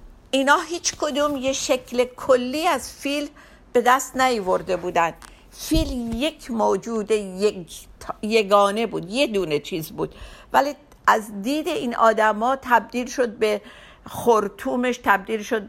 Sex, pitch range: female, 210-260 Hz